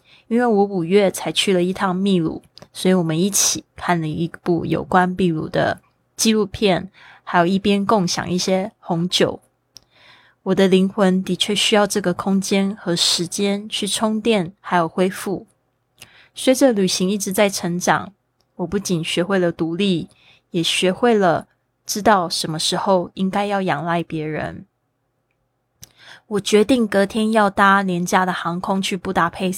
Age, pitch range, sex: 20-39, 175-205 Hz, female